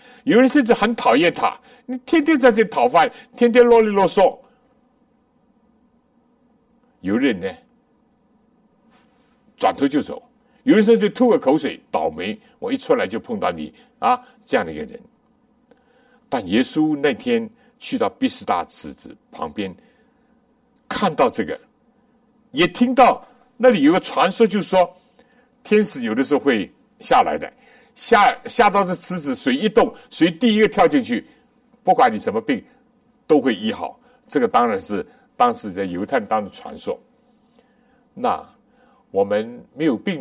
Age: 60-79